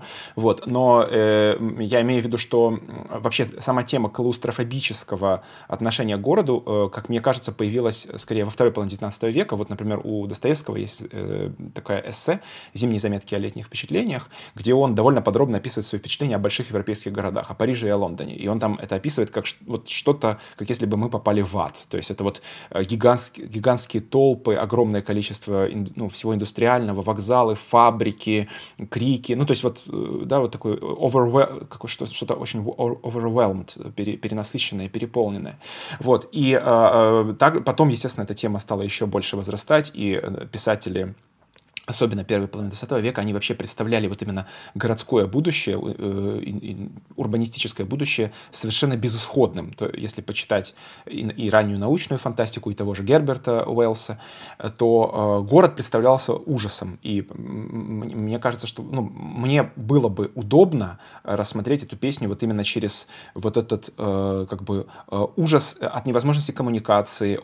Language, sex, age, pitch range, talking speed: Russian, male, 20-39, 105-125 Hz, 145 wpm